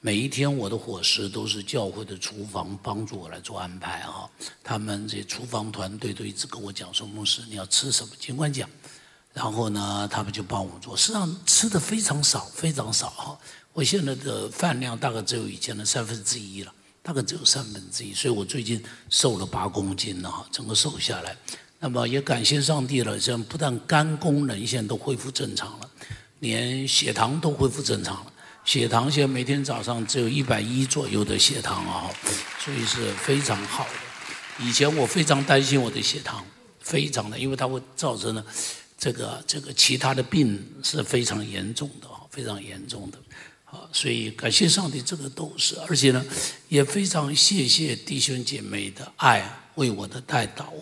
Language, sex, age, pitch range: Chinese, male, 60-79, 105-140 Hz